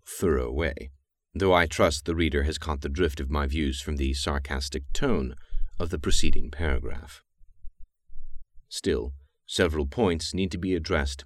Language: English